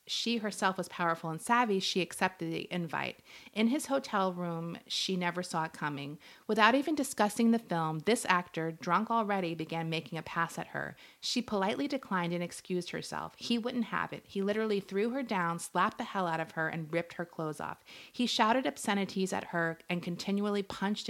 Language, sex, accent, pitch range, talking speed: English, female, American, 165-210 Hz, 195 wpm